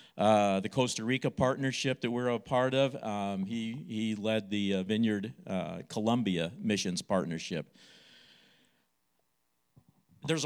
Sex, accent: male, American